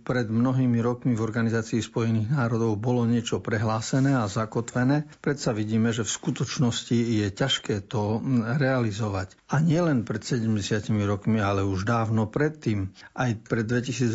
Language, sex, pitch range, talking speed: Slovak, male, 110-130 Hz, 140 wpm